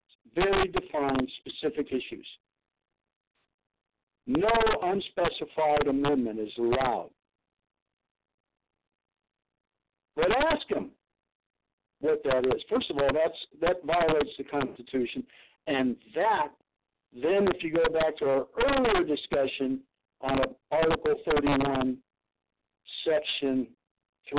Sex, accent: male, American